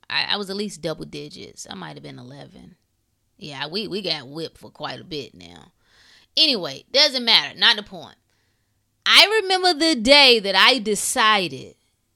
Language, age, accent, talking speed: English, 20-39, American, 170 wpm